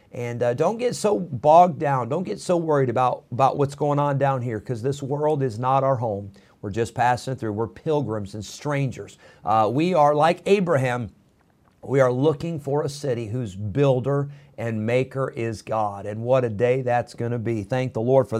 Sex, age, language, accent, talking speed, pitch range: male, 50-69, English, American, 200 wpm, 125-165 Hz